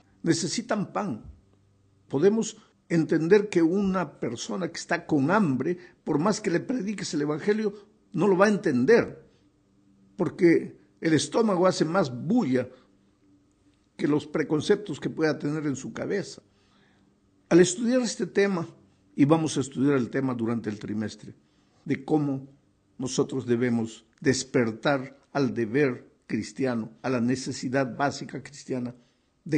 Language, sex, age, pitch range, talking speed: Spanish, male, 50-69, 125-195 Hz, 130 wpm